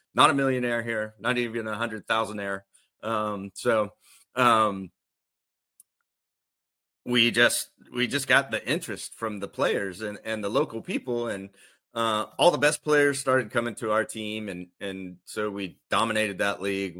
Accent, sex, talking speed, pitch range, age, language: American, male, 160 wpm, 100-120 Hz, 30-49, English